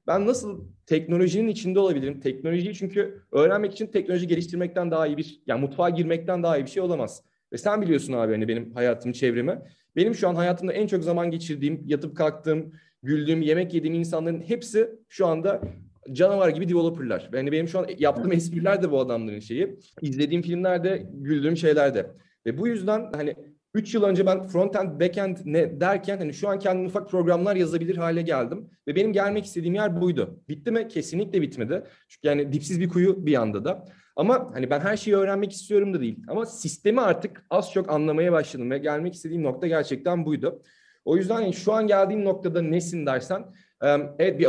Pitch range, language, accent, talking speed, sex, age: 155-195 Hz, Turkish, native, 185 wpm, male, 30-49